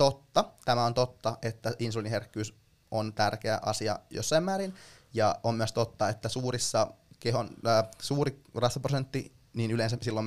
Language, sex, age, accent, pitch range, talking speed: Finnish, male, 20-39, native, 110-130 Hz, 140 wpm